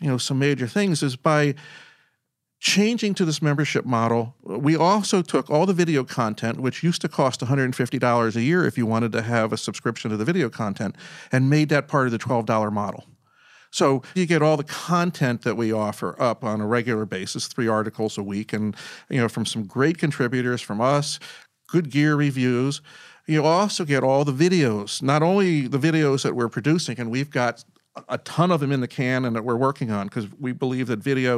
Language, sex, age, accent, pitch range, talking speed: English, male, 40-59, American, 115-150 Hz, 205 wpm